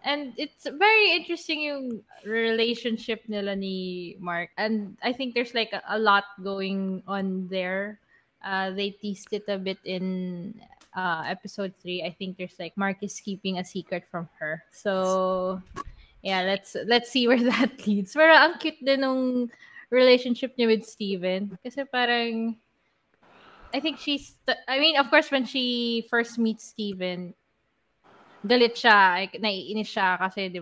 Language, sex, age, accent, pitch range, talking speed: English, female, 20-39, Filipino, 190-240 Hz, 150 wpm